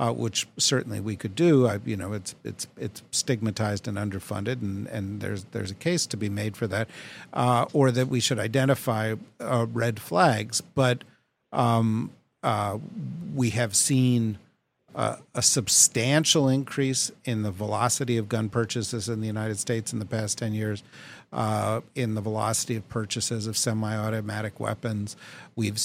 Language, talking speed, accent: English, 160 wpm, American